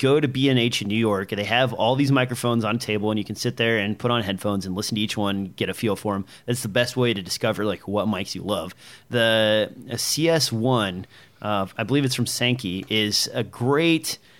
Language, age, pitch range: English, 30-49, 110-130 Hz